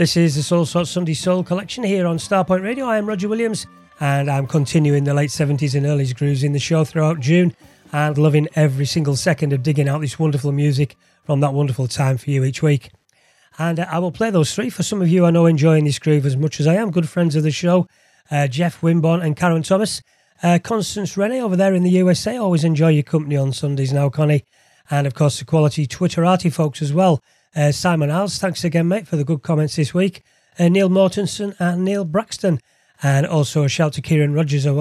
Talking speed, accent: 225 wpm, British